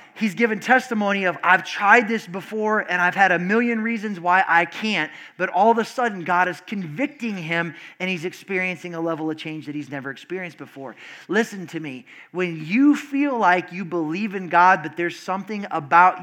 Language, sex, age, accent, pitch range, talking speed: English, male, 30-49, American, 165-215 Hz, 195 wpm